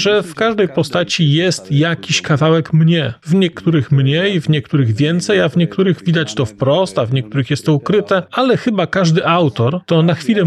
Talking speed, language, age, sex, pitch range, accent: 190 wpm, Polish, 40-59, male, 140-180 Hz, native